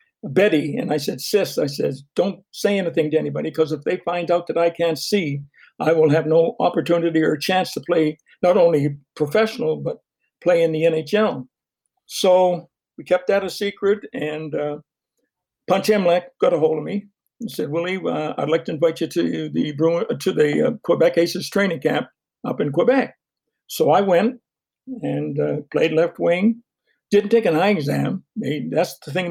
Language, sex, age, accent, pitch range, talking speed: English, male, 60-79, American, 155-205 Hz, 185 wpm